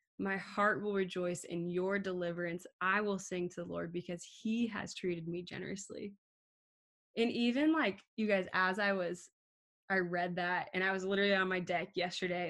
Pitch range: 180-215 Hz